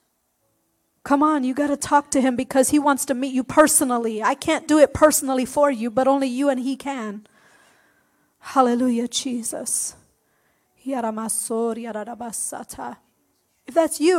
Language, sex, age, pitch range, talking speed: English, female, 40-59, 265-325 Hz, 140 wpm